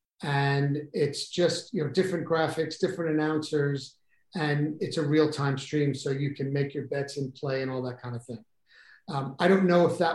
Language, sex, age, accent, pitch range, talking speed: English, male, 40-59, American, 140-165 Hz, 200 wpm